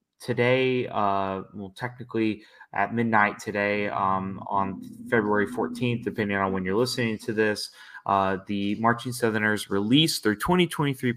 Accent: American